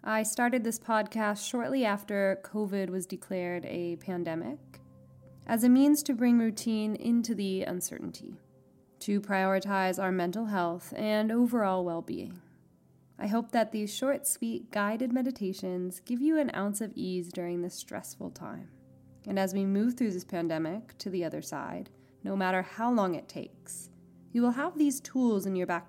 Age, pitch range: 20-39, 180-230 Hz